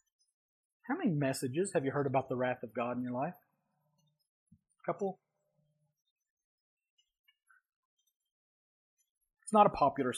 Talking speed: 120 wpm